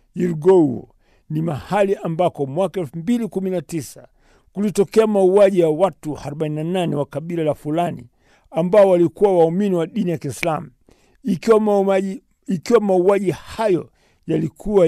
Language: Swahili